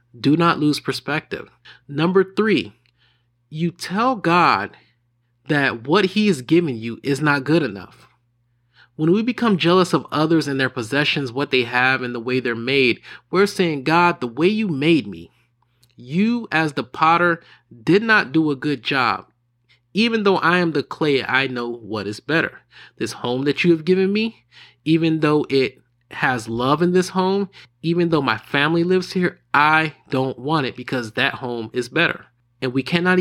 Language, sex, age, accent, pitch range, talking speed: English, male, 30-49, American, 125-170 Hz, 175 wpm